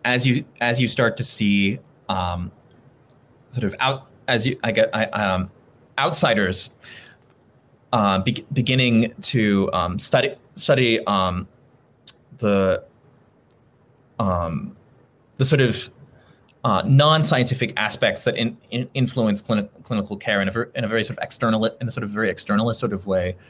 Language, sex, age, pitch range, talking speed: English, male, 30-49, 100-130 Hz, 150 wpm